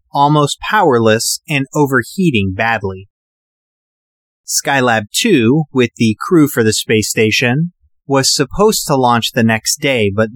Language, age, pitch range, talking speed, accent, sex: English, 30-49, 110-150 Hz, 125 wpm, American, male